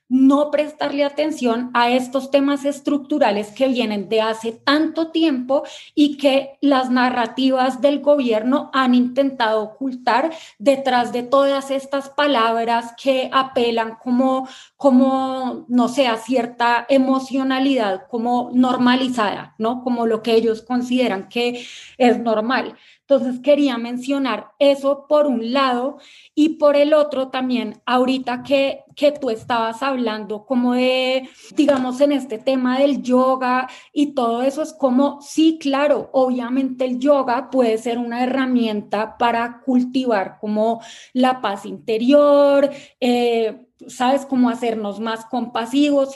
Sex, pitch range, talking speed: female, 235-280 Hz, 130 wpm